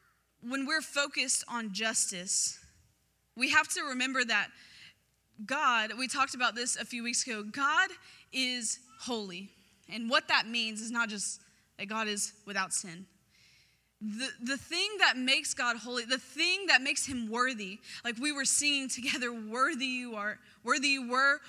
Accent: American